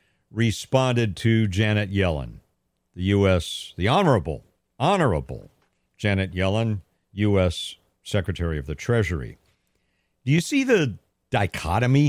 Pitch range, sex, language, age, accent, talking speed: 95-135 Hz, male, English, 50-69, American, 105 wpm